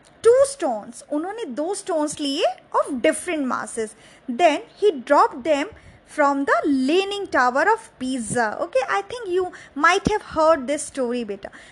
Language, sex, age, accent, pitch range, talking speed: English, female, 20-39, Indian, 260-360 Hz, 150 wpm